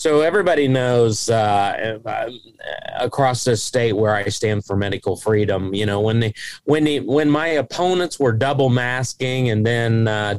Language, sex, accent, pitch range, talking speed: English, male, American, 110-135 Hz, 160 wpm